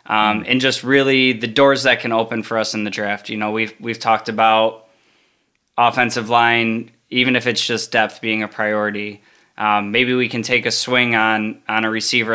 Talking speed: 200 wpm